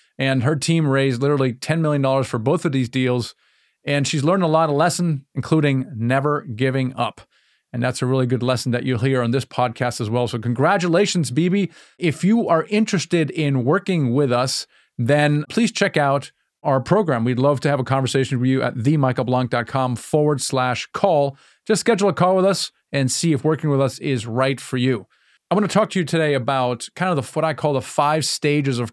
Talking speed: 205 wpm